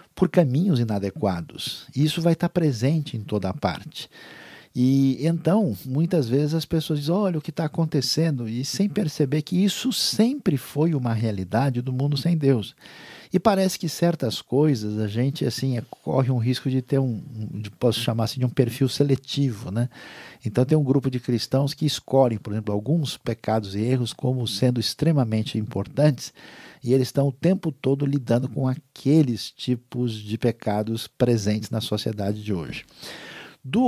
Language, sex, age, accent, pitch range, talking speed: Portuguese, male, 50-69, Brazilian, 110-150 Hz, 170 wpm